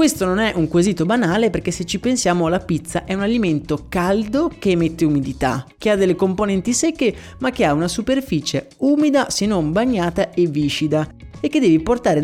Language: Italian